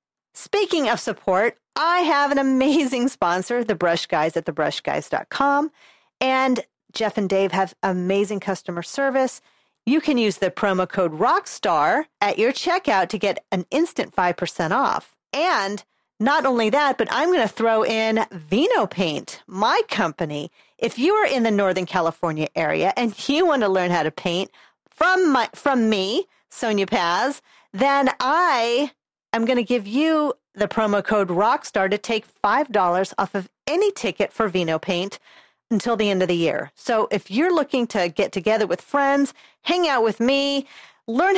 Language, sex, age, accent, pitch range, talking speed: English, female, 40-59, American, 195-280 Hz, 165 wpm